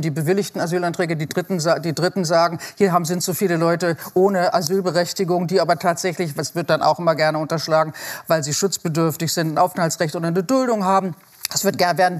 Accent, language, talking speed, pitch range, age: German, German, 180 wpm, 170-195 Hz, 40-59